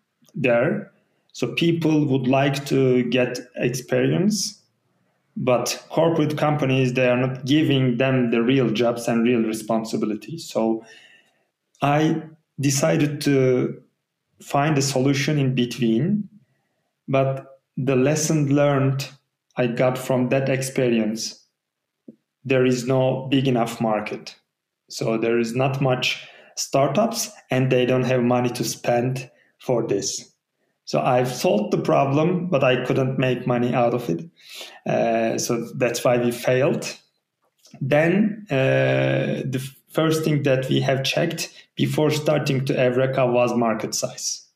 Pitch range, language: 115-140 Hz, Turkish